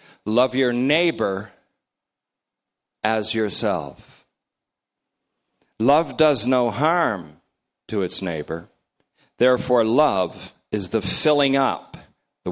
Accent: American